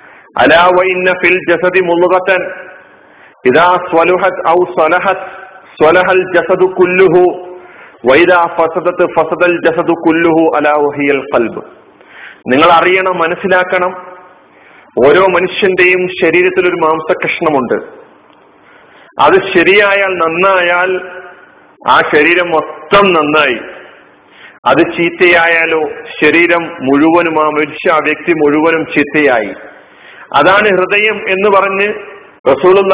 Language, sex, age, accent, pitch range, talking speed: Malayalam, male, 40-59, native, 160-185 Hz, 90 wpm